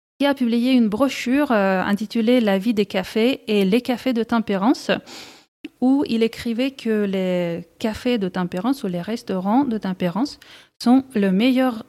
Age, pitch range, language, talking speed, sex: 30-49, 200-245 Hz, French, 170 wpm, female